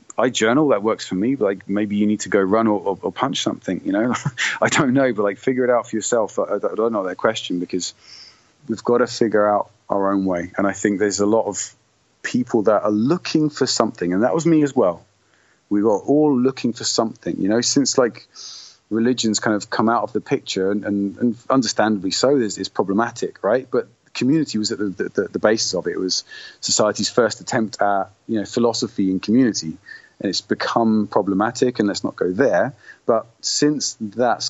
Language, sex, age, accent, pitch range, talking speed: English, male, 30-49, British, 100-120 Hz, 210 wpm